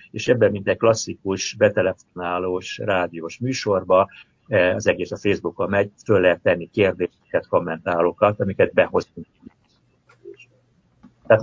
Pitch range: 90-120 Hz